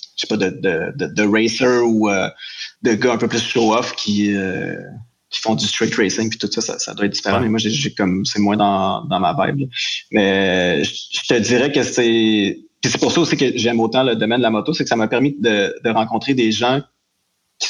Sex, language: male, French